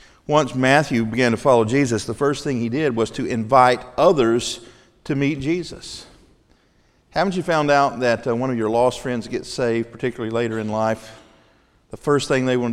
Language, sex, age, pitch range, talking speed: English, male, 50-69, 115-155 Hz, 190 wpm